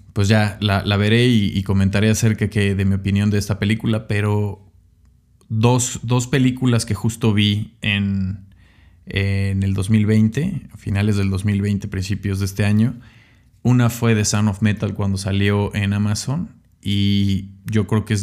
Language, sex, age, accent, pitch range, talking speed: Spanish, male, 20-39, Mexican, 100-110 Hz, 160 wpm